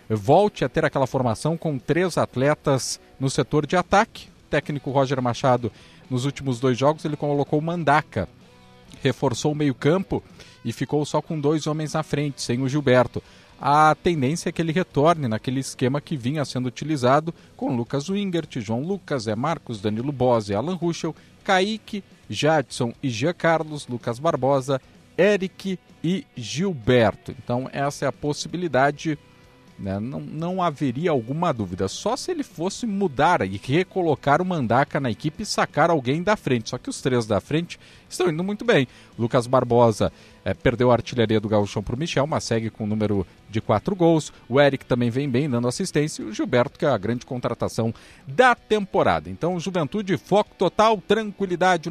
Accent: Brazilian